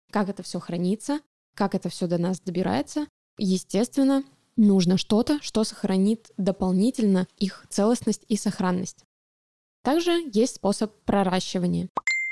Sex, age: female, 20-39